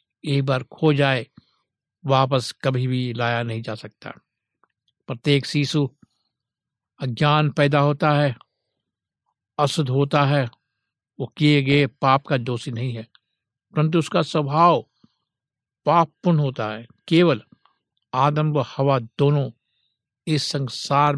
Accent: native